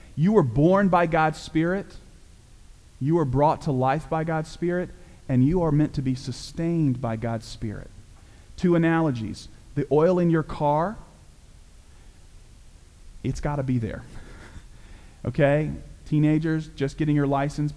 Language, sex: English, male